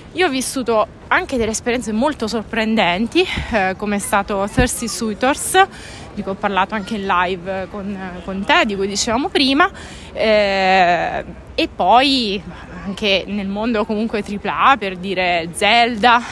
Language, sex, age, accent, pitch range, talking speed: Italian, female, 20-39, native, 215-270 Hz, 145 wpm